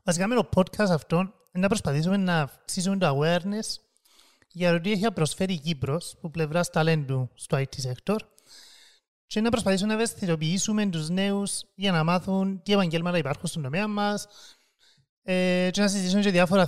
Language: Greek